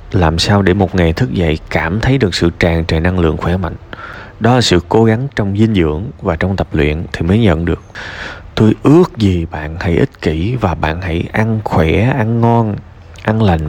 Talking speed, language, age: 215 wpm, Vietnamese, 20-39